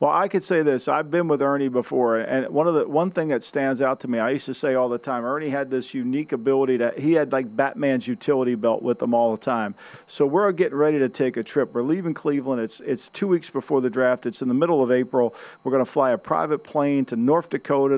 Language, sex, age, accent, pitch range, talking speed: English, male, 50-69, American, 125-150 Hz, 265 wpm